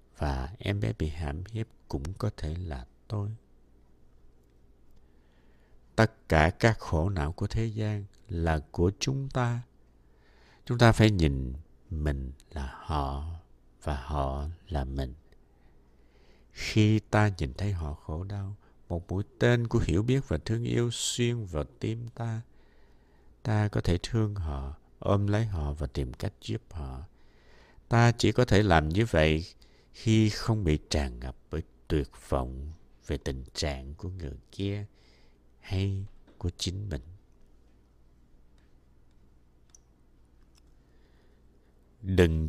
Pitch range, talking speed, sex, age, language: 65-105 Hz, 130 wpm, male, 60-79, Vietnamese